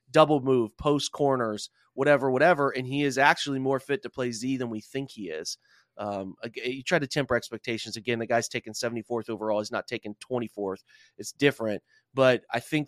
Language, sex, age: English, male, 30-49